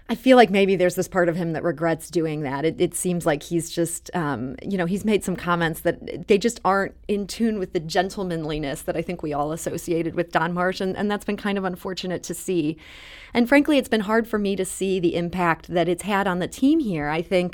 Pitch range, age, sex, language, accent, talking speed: 175-230 Hz, 30-49, female, English, American, 250 wpm